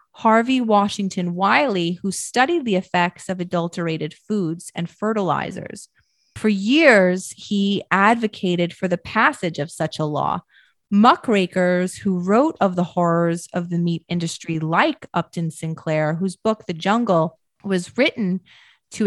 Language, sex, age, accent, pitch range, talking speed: English, female, 30-49, American, 175-225 Hz, 135 wpm